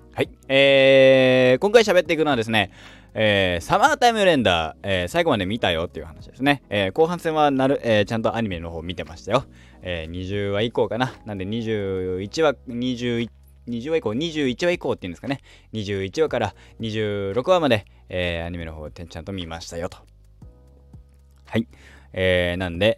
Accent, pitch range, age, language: native, 85-135 Hz, 20-39, Japanese